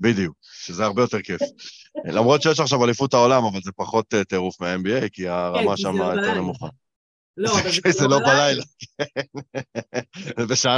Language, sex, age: Hebrew, male, 20-39